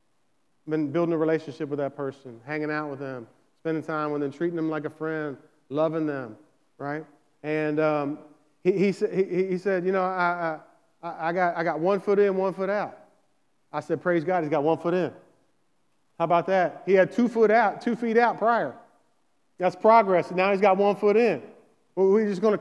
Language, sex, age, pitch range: English, male, 30-49, 155-215 Hz